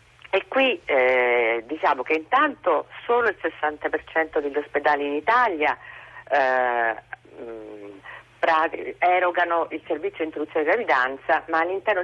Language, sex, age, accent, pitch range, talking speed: Italian, female, 40-59, native, 135-190 Hz, 115 wpm